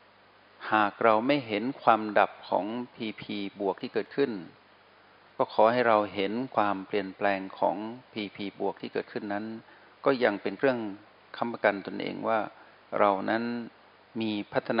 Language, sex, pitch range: Thai, male, 100-120 Hz